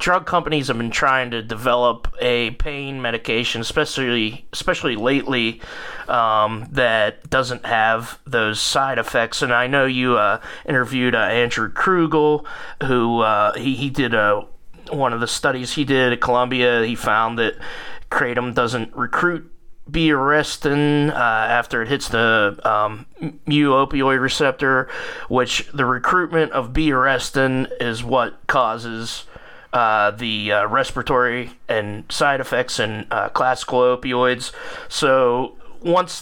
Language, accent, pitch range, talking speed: English, American, 115-140 Hz, 130 wpm